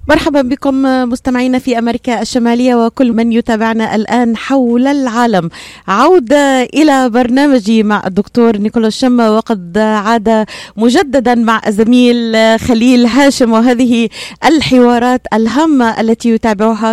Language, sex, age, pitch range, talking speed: Arabic, female, 30-49, 215-255 Hz, 110 wpm